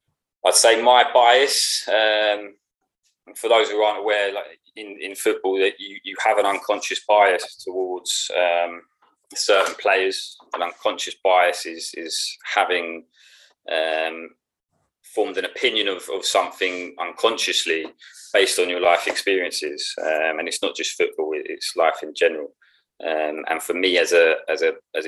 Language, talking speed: English, 150 wpm